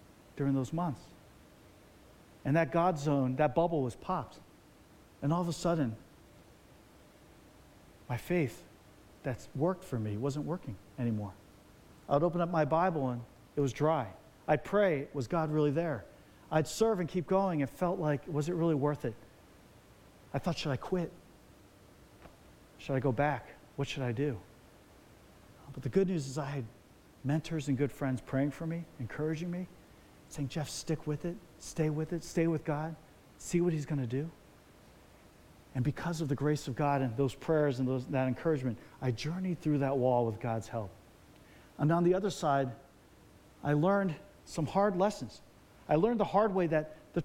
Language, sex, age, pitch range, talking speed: English, male, 40-59, 130-170 Hz, 175 wpm